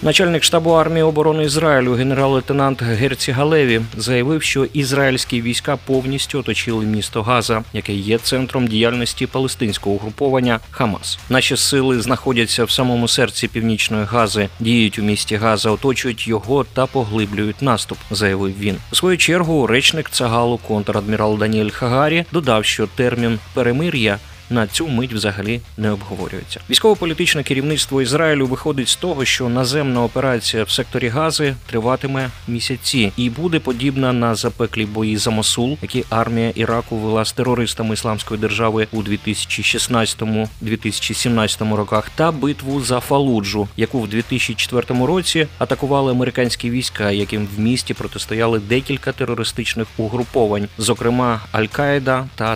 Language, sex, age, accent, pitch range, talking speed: Ukrainian, male, 30-49, native, 110-135 Hz, 130 wpm